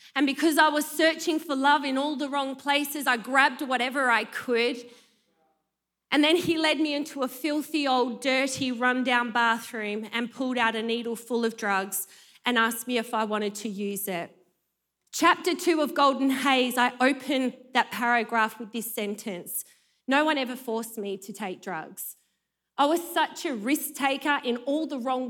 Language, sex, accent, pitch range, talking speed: English, female, Australian, 225-275 Hz, 185 wpm